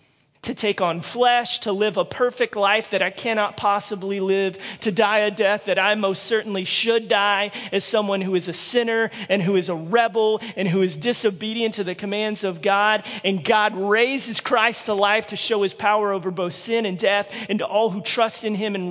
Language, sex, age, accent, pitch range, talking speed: English, male, 30-49, American, 160-215 Hz, 215 wpm